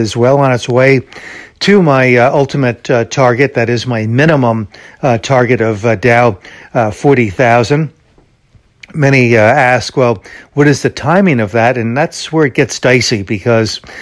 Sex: male